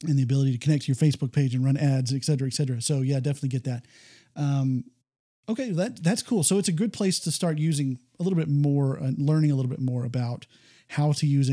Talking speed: 255 wpm